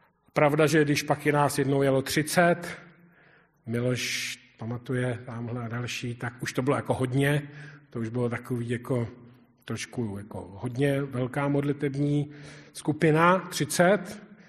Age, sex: 40-59, male